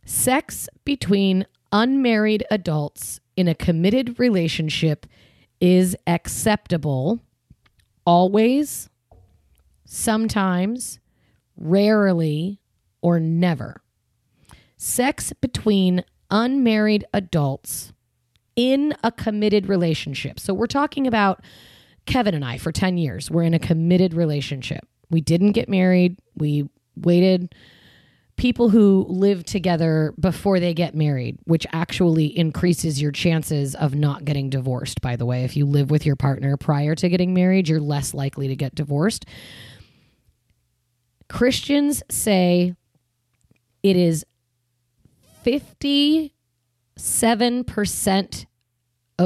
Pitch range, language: 140-205 Hz, English